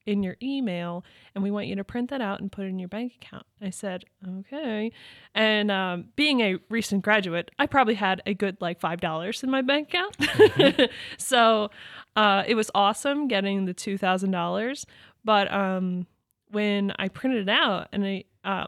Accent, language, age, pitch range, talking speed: American, English, 20-39, 190-225 Hz, 190 wpm